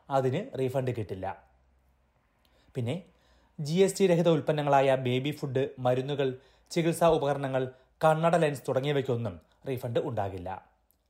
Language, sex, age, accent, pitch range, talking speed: Malayalam, male, 30-49, native, 120-160 Hz, 105 wpm